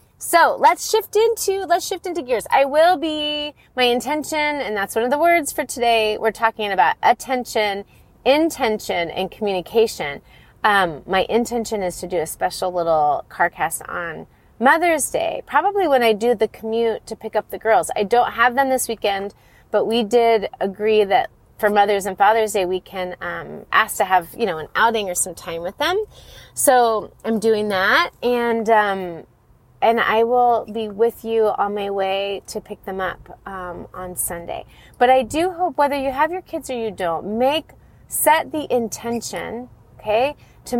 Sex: female